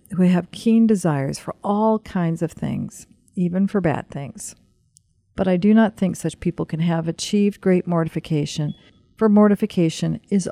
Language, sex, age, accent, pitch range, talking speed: English, female, 50-69, American, 150-200 Hz, 160 wpm